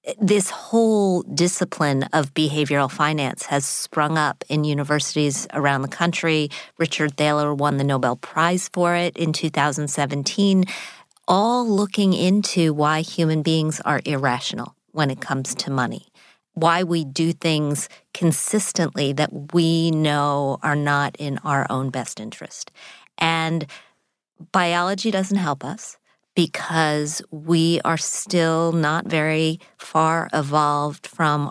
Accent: American